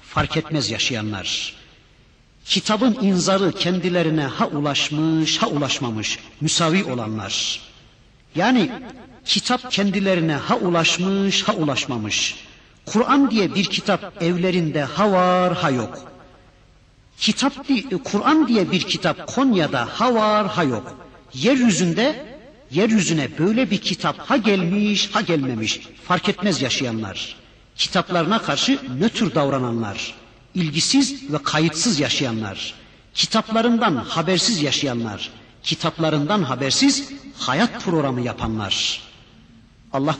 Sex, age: male, 50-69